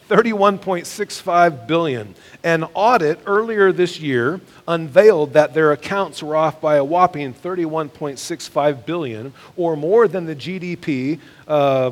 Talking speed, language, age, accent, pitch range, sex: 115 wpm, English, 40-59, American, 140-175 Hz, male